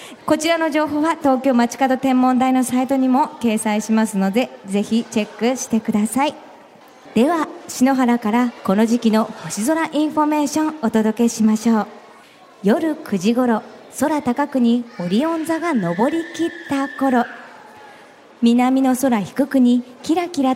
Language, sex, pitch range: Japanese, male, 225-285 Hz